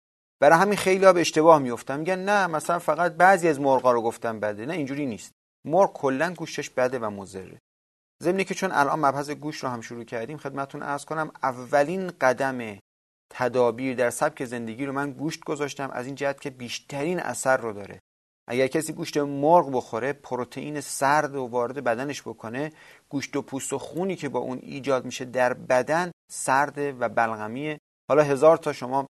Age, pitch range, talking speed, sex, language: 30-49, 120-150 Hz, 180 wpm, male, Persian